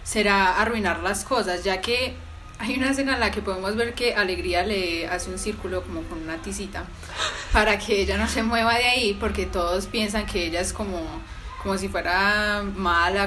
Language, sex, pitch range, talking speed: Spanish, female, 165-215 Hz, 195 wpm